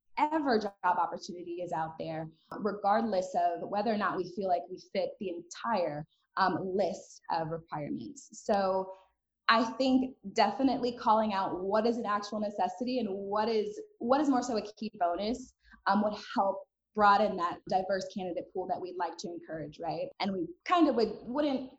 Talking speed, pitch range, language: 175 wpm, 185-240 Hz, English